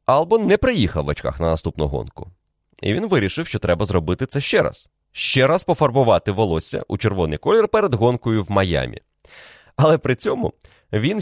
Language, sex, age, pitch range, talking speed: Ukrainian, male, 30-49, 90-140 Hz, 170 wpm